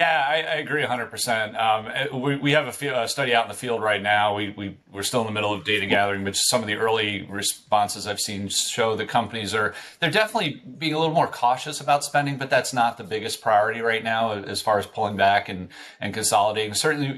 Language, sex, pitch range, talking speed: English, male, 100-115 Hz, 235 wpm